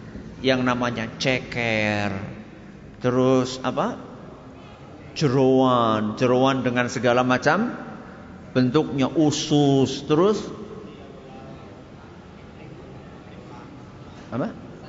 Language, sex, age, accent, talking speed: Indonesian, male, 50-69, native, 55 wpm